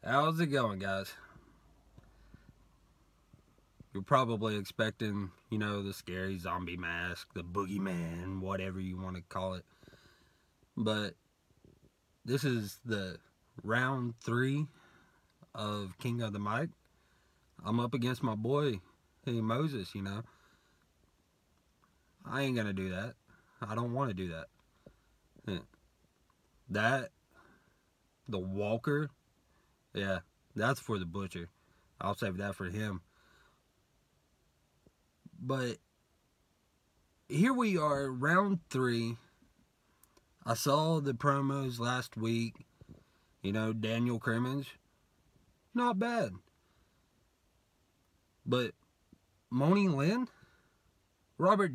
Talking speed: 100 wpm